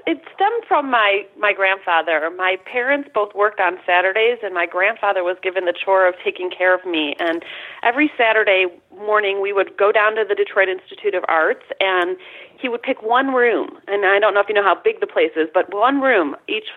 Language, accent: English, American